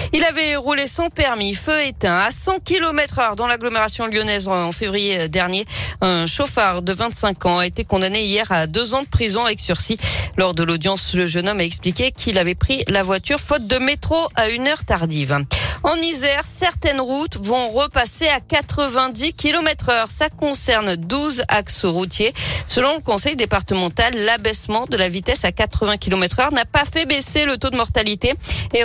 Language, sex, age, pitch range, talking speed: French, female, 40-59, 180-265 Hz, 185 wpm